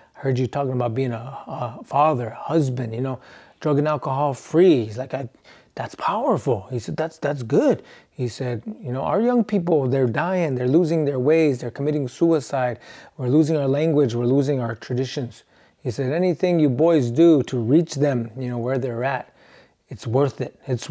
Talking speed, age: 190 wpm, 30-49